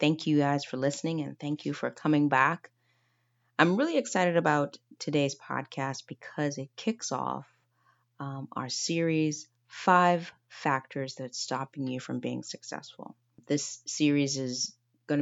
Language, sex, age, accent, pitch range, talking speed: English, female, 30-49, American, 130-155 Hz, 140 wpm